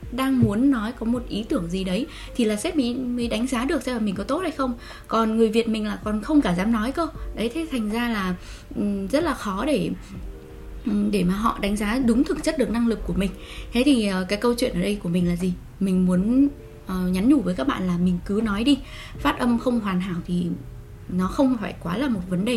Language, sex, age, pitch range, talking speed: Vietnamese, female, 20-39, 195-265 Hz, 245 wpm